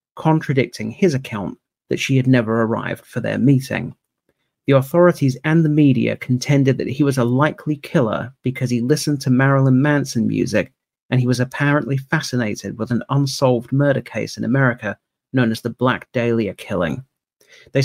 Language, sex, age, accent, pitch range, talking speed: English, male, 40-59, British, 120-140 Hz, 165 wpm